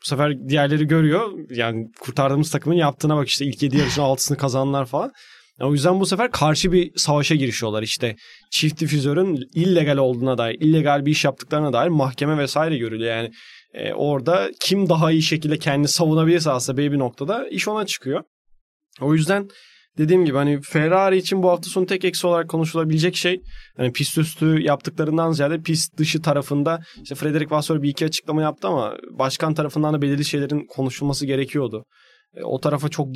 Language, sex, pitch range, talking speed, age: Turkish, male, 135-160 Hz, 175 wpm, 20-39